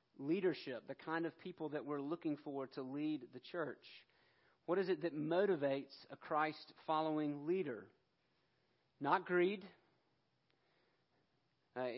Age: 40-59